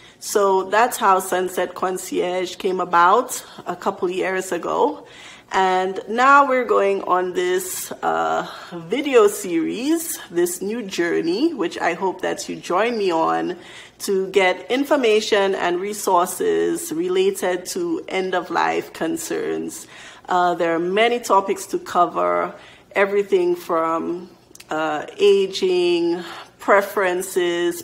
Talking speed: 120 wpm